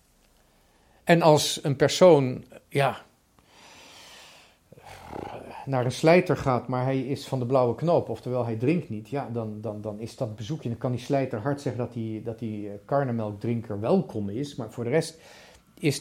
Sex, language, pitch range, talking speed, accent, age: male, Dutch, 120-155 Hz, 165 wpm, Dutch, 40-59